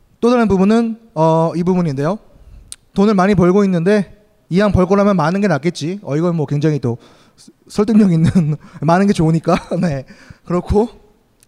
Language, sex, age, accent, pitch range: Korean, male, 20-39, native, 135-195 Hz